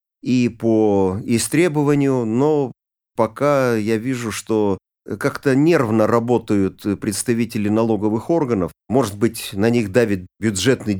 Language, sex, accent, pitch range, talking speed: Russian, male, native, 105-135 Hz, 110 wpm